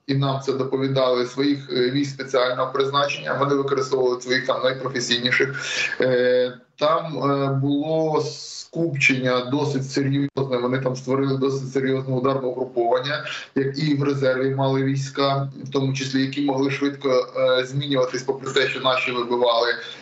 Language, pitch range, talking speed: Ukrainian, 135-145 Hz, 125 wpm